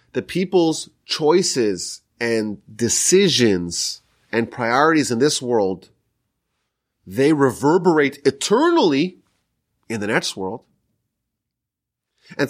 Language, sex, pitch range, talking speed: English, male, 130-220 Hz, 85 wpm